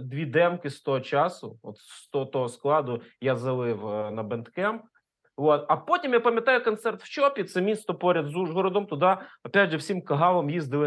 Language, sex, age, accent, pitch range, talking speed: Ukrainian, male, 30-49, native, 140-200 Hz, 175 wpm